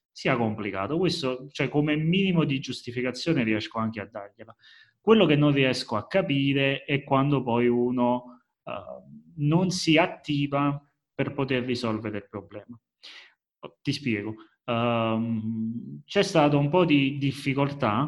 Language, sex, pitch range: Italian, male, 110-140 Hz